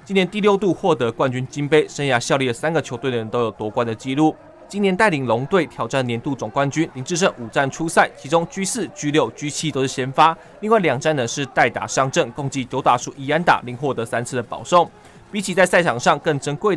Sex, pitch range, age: male, 125-160 Hz, 20-39